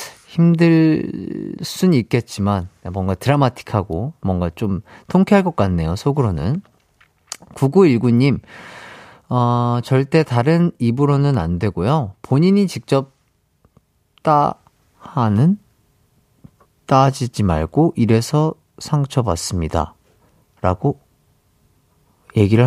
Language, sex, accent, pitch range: Korean, male, native, 105-150 Hz